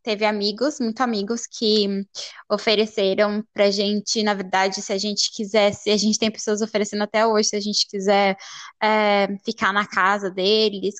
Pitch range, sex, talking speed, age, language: 210-235 Hz, female, 170 wpm, 10-29, English